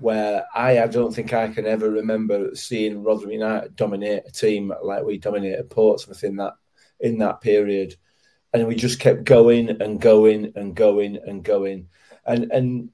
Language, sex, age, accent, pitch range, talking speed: English, male, 30-49, British, 110-135 Hz, 170 wpm